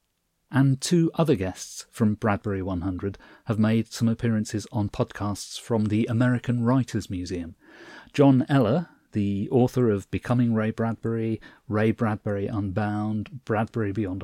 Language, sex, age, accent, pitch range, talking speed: English, male, 40-59, British, 100-130 Hz, 130 wpm